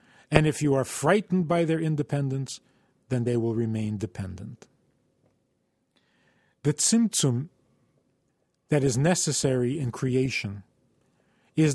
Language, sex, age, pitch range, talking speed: English, male, 40-59, 120-155 Hz, 105 wpm